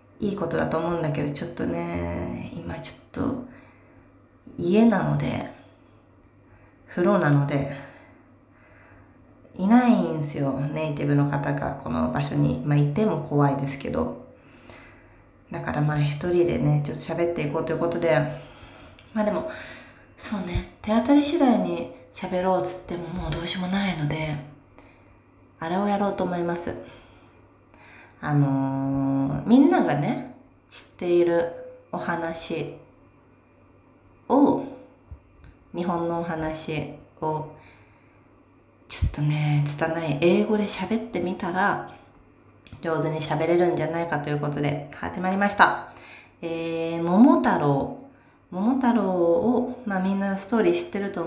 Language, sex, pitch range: Japanese, female, 135-180 Hz